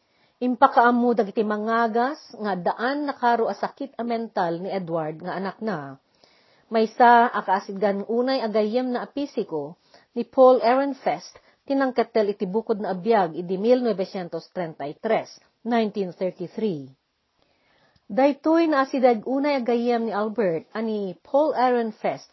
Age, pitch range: 40-59, 185-245 Hz